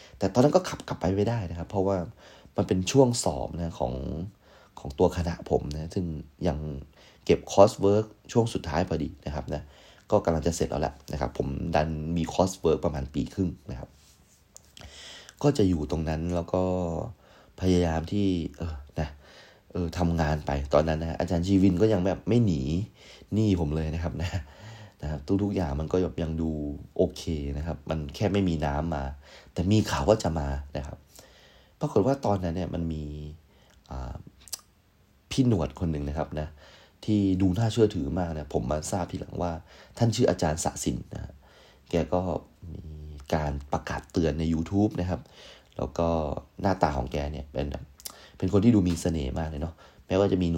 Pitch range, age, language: 75-95 Hz, 30-49, Thai